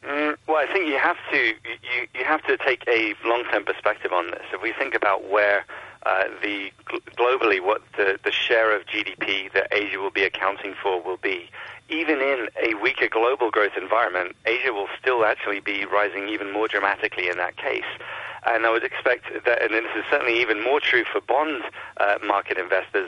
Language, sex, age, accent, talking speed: English, male, 40-59, British, 195 wpm